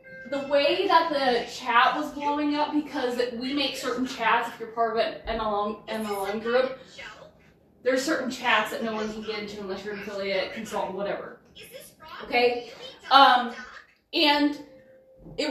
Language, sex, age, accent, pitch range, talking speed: English, female, 20-39, American, 235-295 Hz, 150 wpm